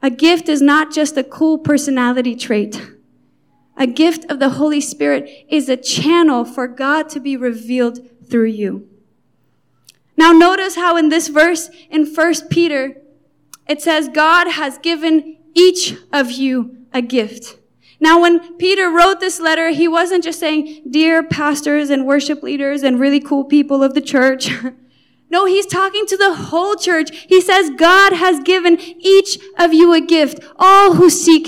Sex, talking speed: female, 165 wpm